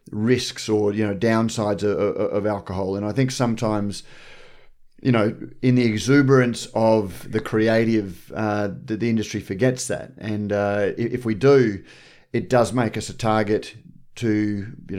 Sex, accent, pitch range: male, Australian, 105-135 Hz